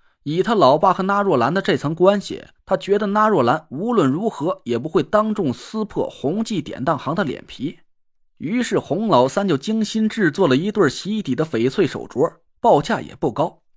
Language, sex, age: Chinese, male, 30-49